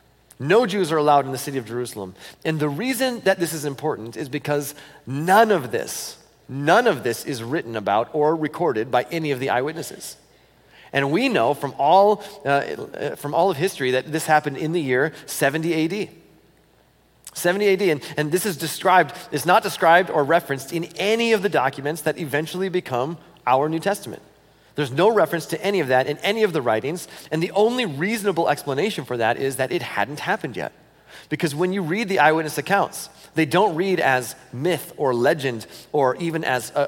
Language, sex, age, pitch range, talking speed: English, male, 40-59, 140-180 Hz, 190 wpm